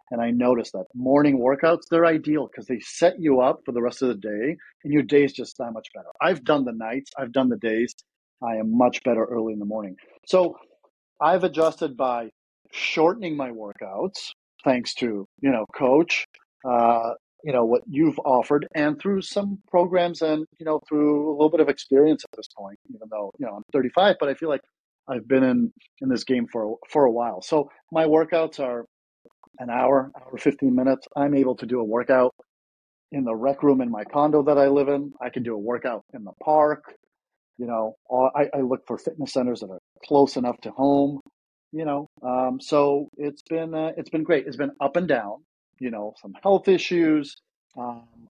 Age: 40-59